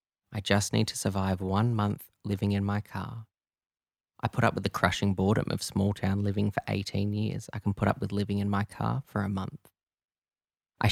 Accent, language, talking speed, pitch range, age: Australian, English, 210 wpm, 100-110 Hz, 20-39